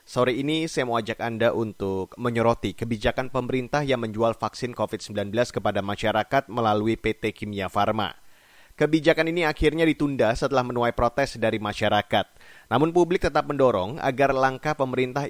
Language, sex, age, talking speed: Indonesian, male, 30-49, 140 wpm